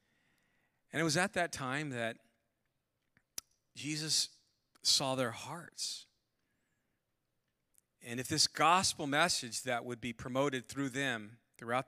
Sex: male